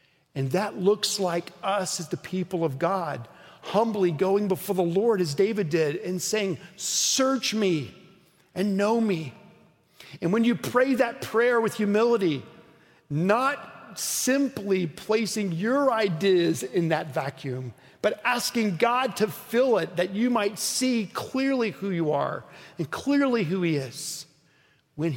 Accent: American